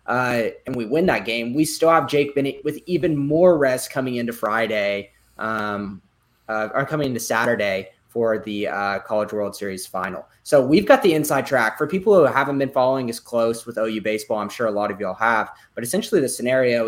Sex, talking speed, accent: male, 210 wpm, American